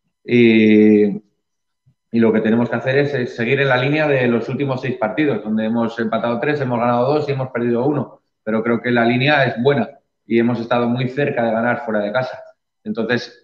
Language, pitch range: Spanish, 115-135 Hz